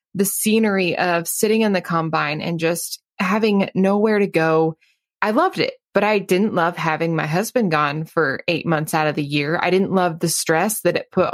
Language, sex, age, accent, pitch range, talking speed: English, female, 20-39, American, 170-210 Hz, 205 wpm